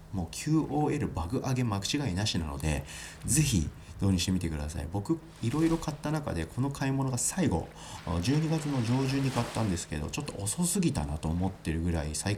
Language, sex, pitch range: Japanese, male, 85-120 Hz